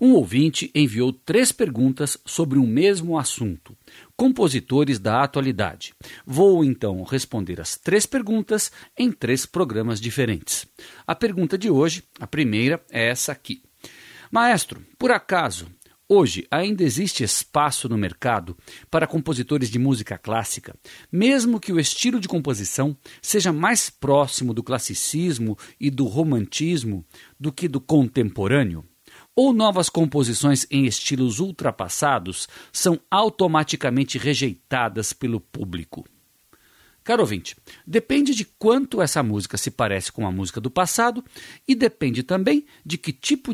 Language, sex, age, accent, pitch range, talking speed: Portuguese, male, 50-69, Brazilian, 115-185 Hz, 130 wpm